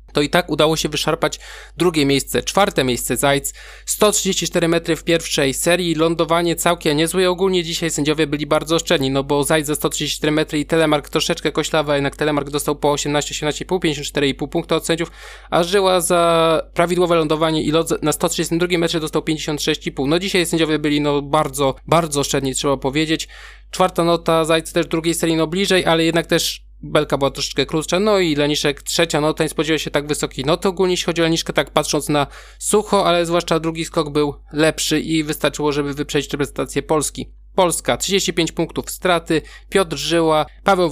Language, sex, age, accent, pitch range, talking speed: Polish, male, 20-39, native, 150-175 Hz, 175 wpm